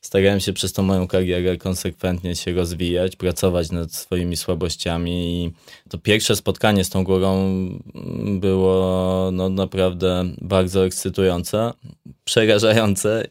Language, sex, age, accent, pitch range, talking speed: Polish, male, 20-39, native, 90-100 Hz, 115 wpm